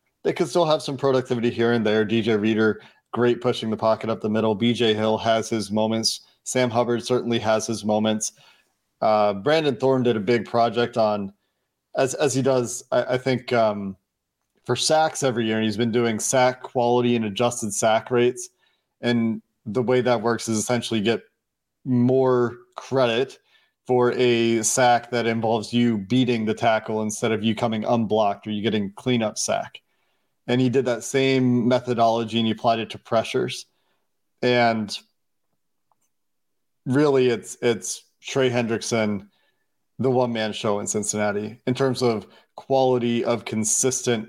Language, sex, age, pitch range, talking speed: English, male, 40-59, 110-125 Hz, 155 wpm